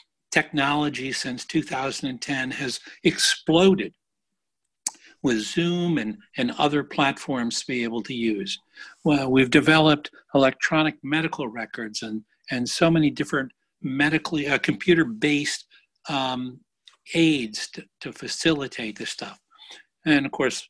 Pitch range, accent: 130-160 Hz, American